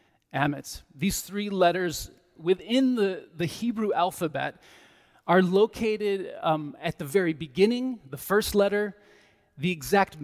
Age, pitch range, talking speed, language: 30-49, 160-200 Hz, 115 wpm, English